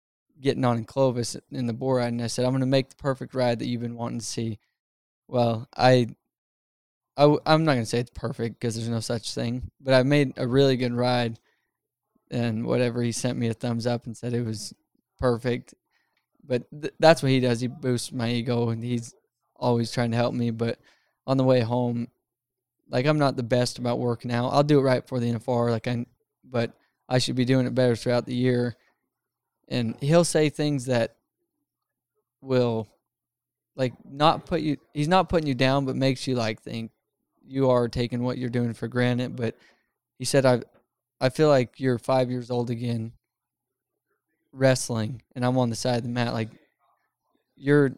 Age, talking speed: 20-39, 200 wpm